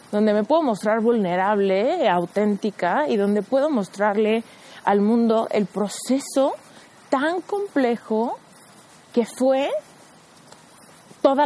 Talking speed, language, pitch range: 100 wpm, Spanish, 200-255 Hz